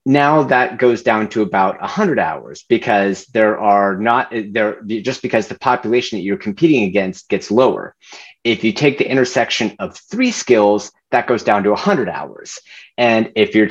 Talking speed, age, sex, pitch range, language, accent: 185 wpm, 30-49, male, 110-145 Hz, English, American